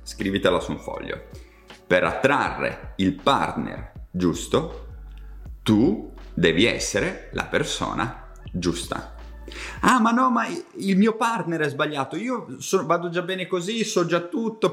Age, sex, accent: 30-49, male, native